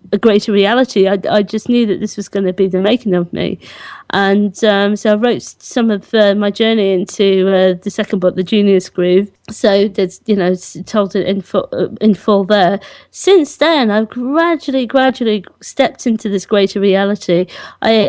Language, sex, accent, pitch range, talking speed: English, female, British, 200-245 Hz, 190 wpm